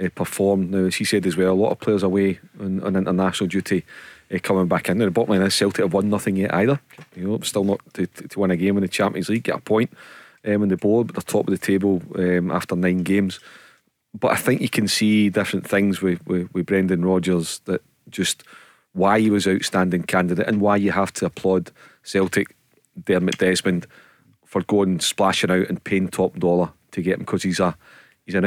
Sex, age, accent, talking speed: male, 30-49, British, 225 wpm